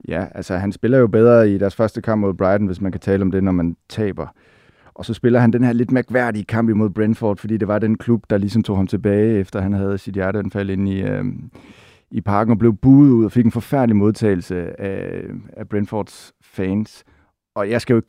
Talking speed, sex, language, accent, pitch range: 230 wpm, male, Danish, native, 95-110 Hz